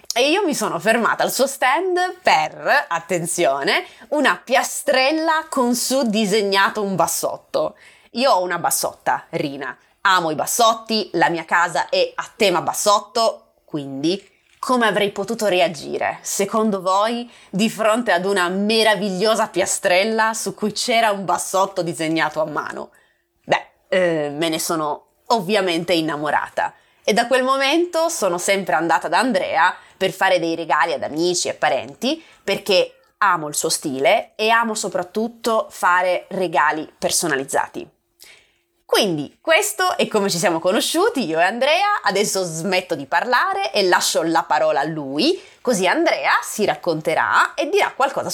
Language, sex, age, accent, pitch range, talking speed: Italian, female, 20-39, native, 180-260 Hz, 145 wpm